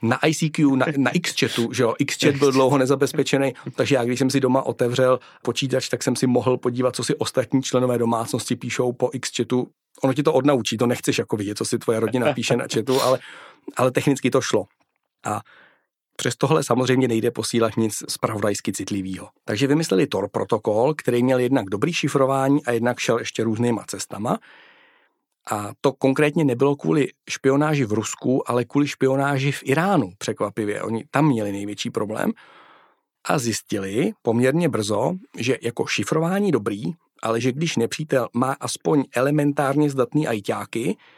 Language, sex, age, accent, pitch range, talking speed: Czech, male, 40-59, native, 115-140 Hz, 165 wpm